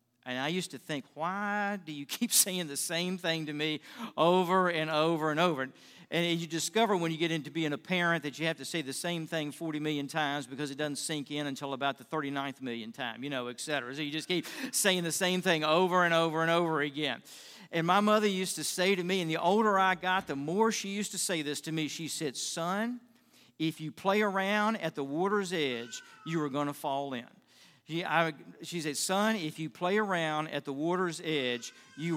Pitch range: 145-185 Hz